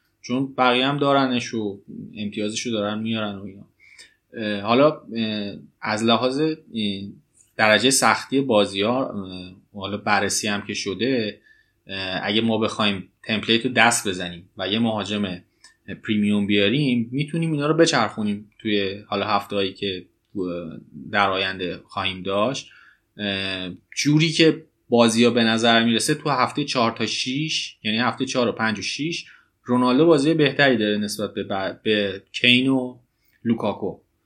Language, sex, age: Persian, male, 20-39